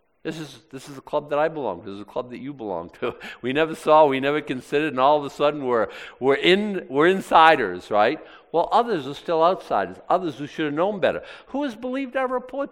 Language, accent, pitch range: English, American, 155-250 Hz